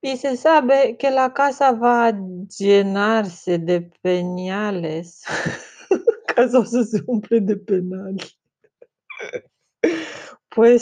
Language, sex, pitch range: Romanian, female, 175-225 Hz